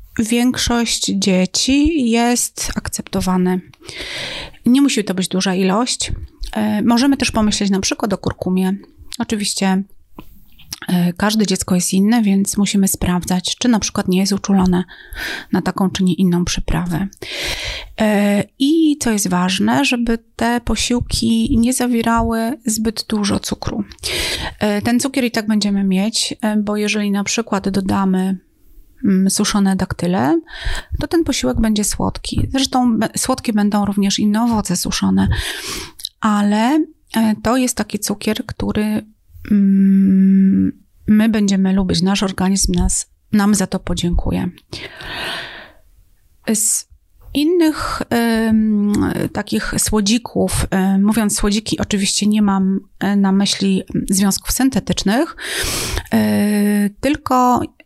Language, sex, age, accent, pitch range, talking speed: Polish, female, 30-49, native, 190-230 Hz, 105 wpm